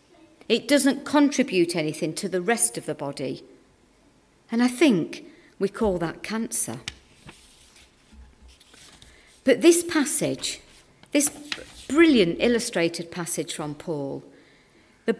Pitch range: 185-290 Hz